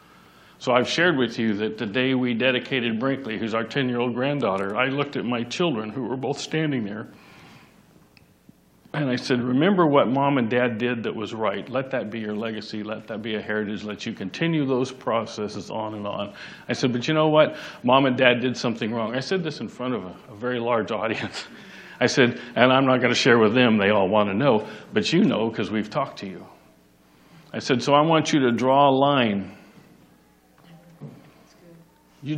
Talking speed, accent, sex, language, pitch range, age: 210 wpm, American, male, English, 105-135 Hz, 60-79